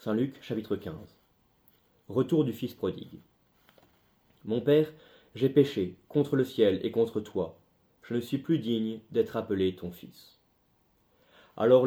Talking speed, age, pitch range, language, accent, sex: 140 wpm, 30-49, 105-140 Hz, French, French, male